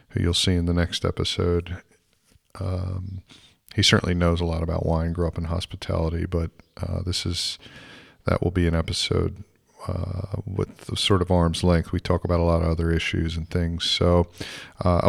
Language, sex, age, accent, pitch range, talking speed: English, male, 40-59, American, 85-95 Hz, 185 wpm